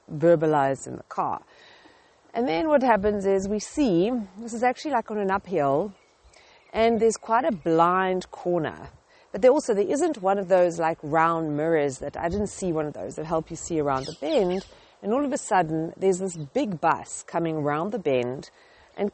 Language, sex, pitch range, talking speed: English, female, 180-250 Hz, 200 wpm